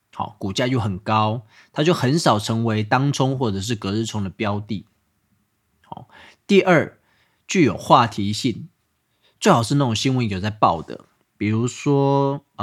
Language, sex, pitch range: Chinese, male, 105-140 Hz